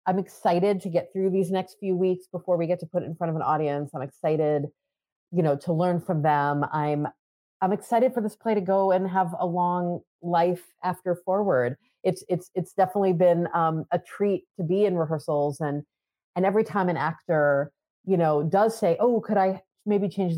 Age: 30-49